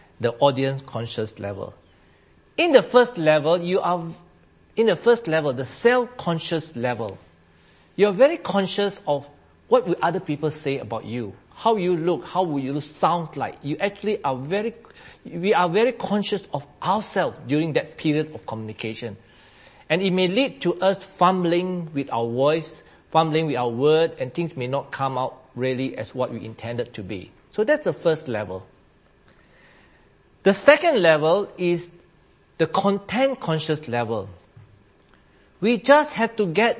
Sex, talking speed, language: male, 160 wpm, English